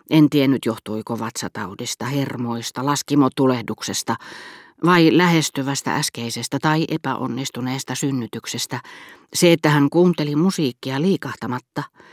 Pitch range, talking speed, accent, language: 120-155 Hz, 90 wpm, native, Finnish